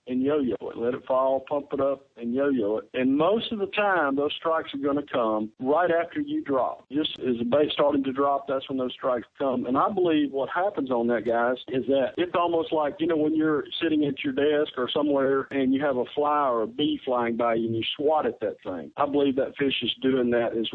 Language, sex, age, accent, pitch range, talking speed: English, male, 50-69, American, 125-155 Hz, 250 wpm